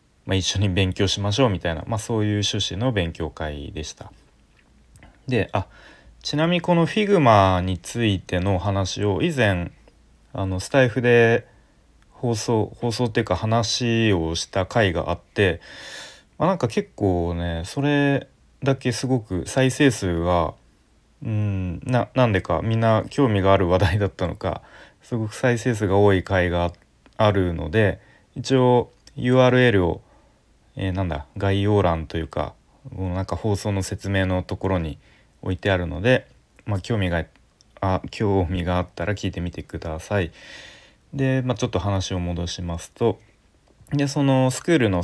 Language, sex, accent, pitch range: Japanese, male, native, 90-115 Hz